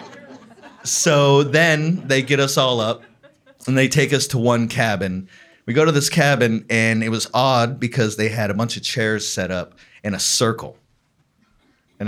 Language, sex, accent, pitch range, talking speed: English, male, American, 105-135 Hz, 180 wpm